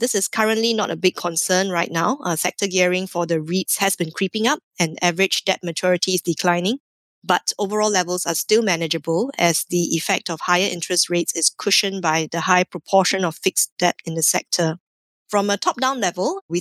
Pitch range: 175-205 Hz